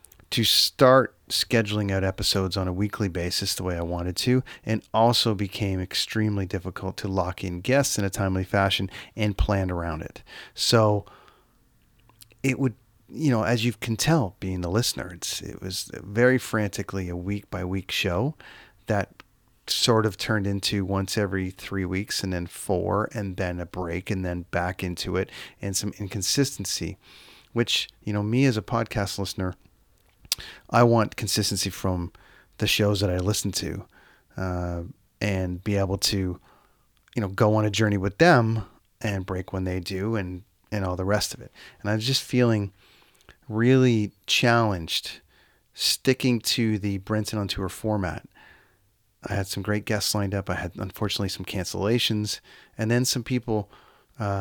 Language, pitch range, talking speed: English, 95-115 Hz, 165 wpm